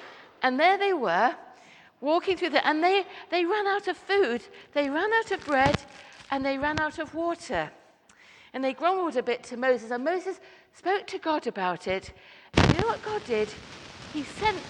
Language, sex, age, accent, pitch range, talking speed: English, female, 50-69, British, 235-355 Hz, 190 wpm